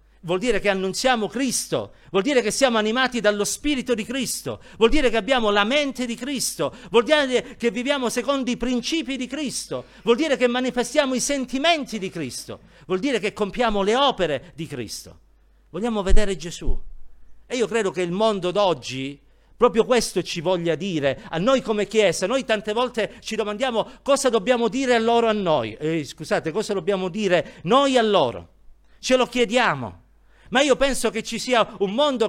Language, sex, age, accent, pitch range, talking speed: Italian, male, 50-69, native, 195-265 Hz, 180 wpm